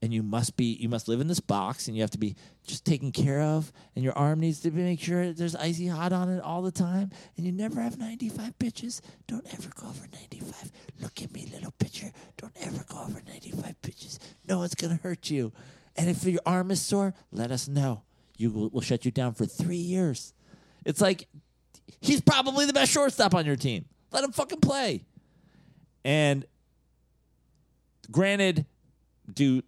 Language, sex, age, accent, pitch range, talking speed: English, male, 40-59, American, 120-180 Hz, 190 wpm